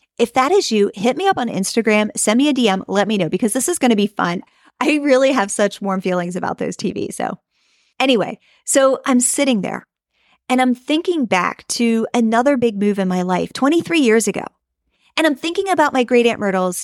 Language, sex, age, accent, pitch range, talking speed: English, female, 30-49, American, 210-280 Hz, 215 wpm